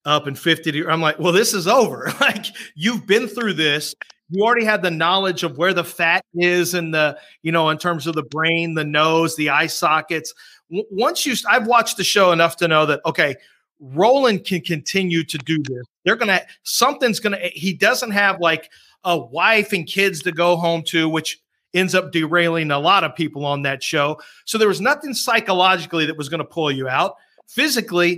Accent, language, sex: American, English, male